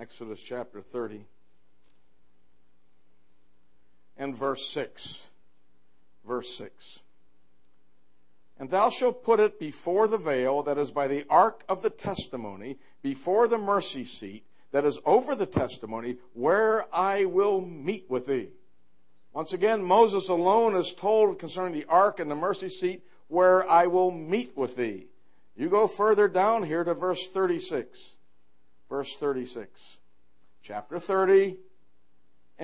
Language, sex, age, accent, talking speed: English, male, 60-79, American, 130 wpm